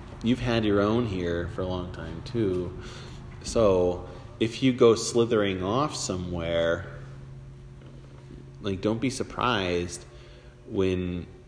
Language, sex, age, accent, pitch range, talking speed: English, male, 30-49, American, 85-120 Hz, 115 wpm